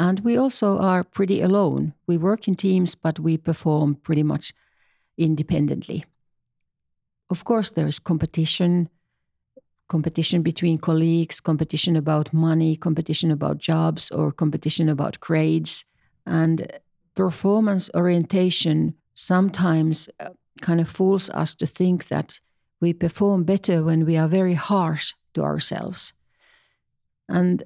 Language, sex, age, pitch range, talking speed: Finnish, female, 60-79, 160-190 Hz, 120 wpm